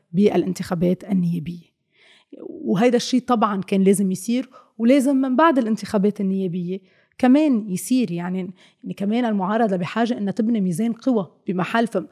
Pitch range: 185-245 Hz